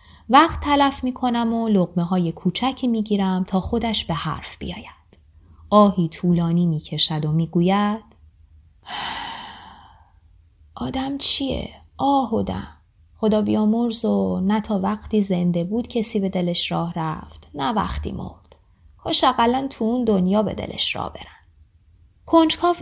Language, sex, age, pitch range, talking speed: Persian, female, 10-29, 170-250 Hz, 125 wpm